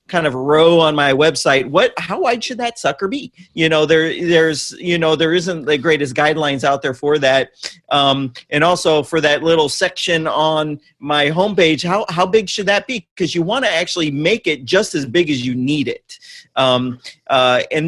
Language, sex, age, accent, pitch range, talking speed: English, male, 40-59, American, 145-185 Hz, 205 wpm